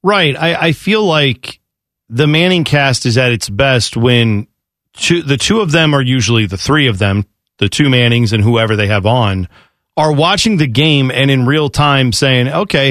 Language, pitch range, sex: English, 120-155 Hz, male